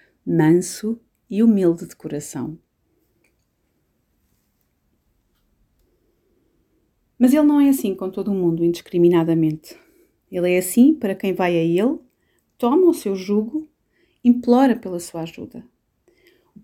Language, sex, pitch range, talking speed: Portuguese, female, 175-220 Hz, 115 wpm